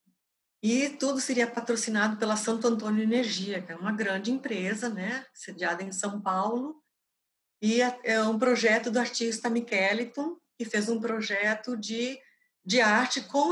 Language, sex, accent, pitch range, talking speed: Portuguese, female, Brazilian, 205-240 Hz, 145 wpm